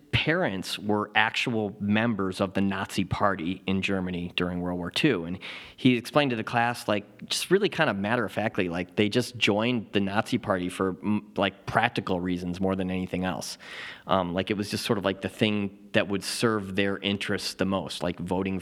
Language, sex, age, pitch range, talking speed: English, male, 30-49, 95-115 Hz, 200 wpm